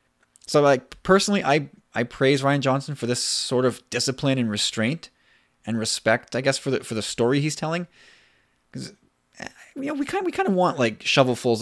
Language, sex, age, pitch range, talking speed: English, male, 20-39, 115-150 Hz, 195 wpm